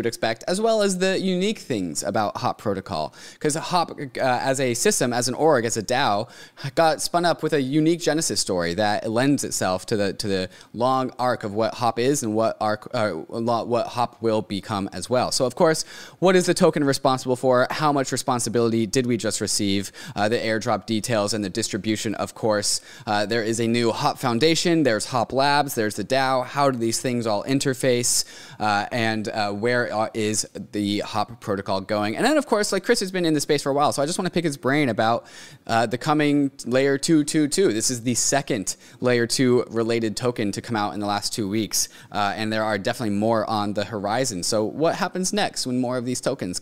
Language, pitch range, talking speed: English, 105-140 Hz, 220 wpm